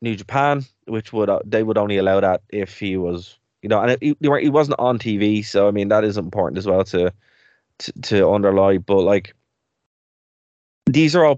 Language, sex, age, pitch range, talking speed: English, male, 20-39, 95-115 Hz, 210 wpm